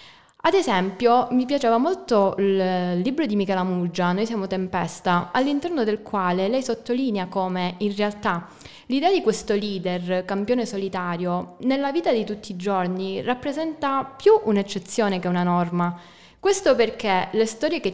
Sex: female